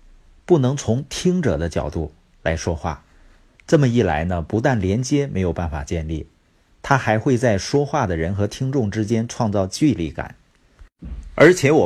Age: 50-69